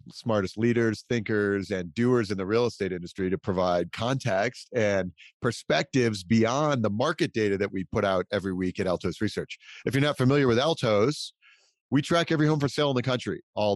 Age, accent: 40-59, American